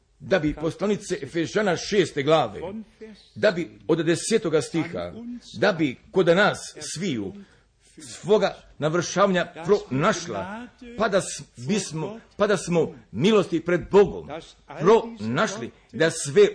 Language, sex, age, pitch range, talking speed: Croatian, male, 50-69, 155-200 Hz, 110 wpm